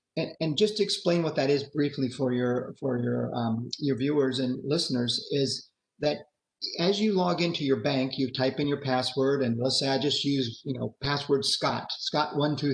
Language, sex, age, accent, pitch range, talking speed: English, male, 40-59, American, 130-160 Hz, 205 wpm